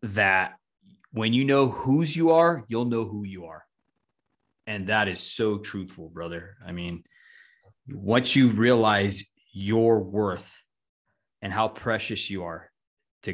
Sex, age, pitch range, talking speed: male, 20-39, 100-125 Hz, 140 wpm